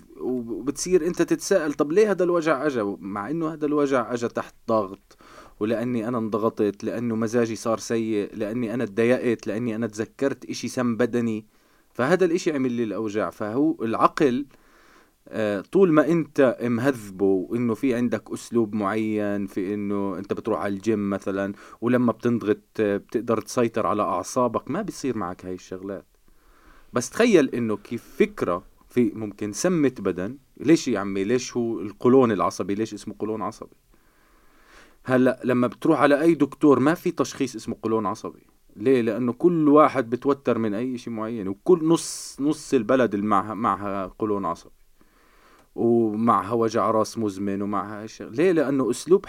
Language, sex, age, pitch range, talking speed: English, male, 20-39, 105-135 Hz, 145 wpm